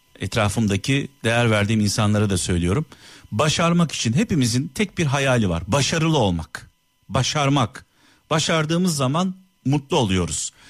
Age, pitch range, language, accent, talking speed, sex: 50-69, 110-165 Hz, Turkish, native, 110 wpm, male